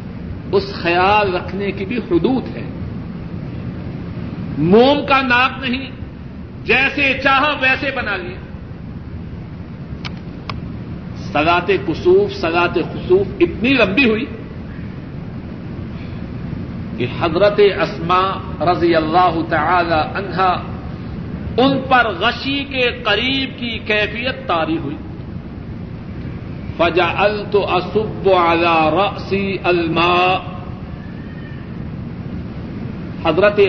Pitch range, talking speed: 170-230 Hz, 80 wpm